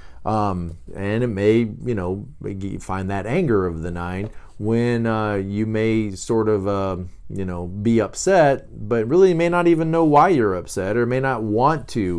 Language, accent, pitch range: English, American, 95-135 Hz